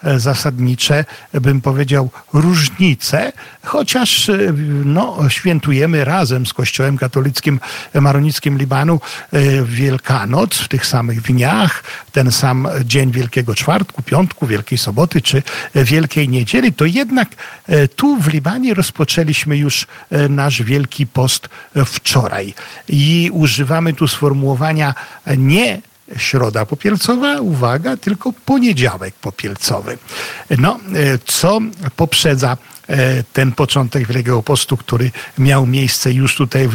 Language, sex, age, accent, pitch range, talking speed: Polish, male, 50-69, native, 125-155 Hz, 105 wpm